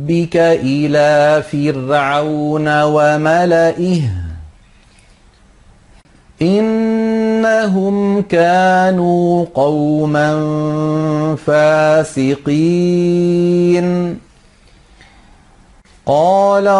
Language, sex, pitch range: Arabic, male, 155-185 Hz